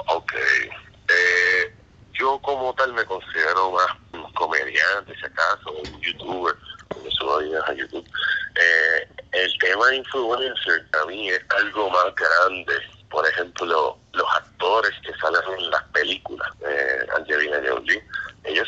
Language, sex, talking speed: English, male, 135 wpm